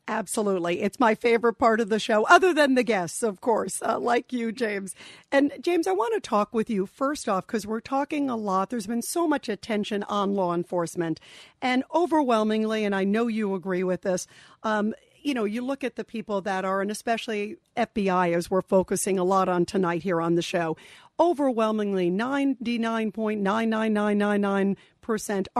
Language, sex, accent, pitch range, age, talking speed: English, female, American, 190-235 Hz, 50-69, 180 wpm